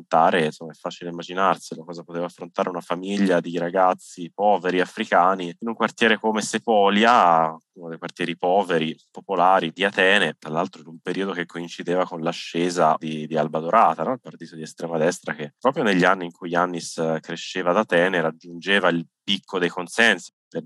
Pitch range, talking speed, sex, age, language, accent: 85-90 Hz, 175 wpm, male, 20-39, Italian, native